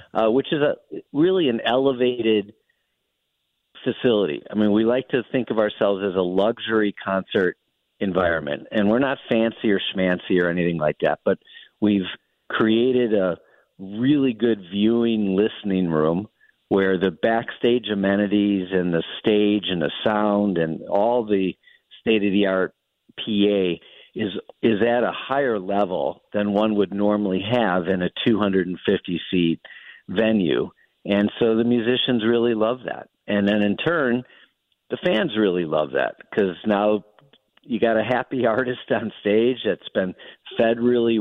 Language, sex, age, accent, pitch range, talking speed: English, male, 50-69, American, 100-120 Hz, 145 wpm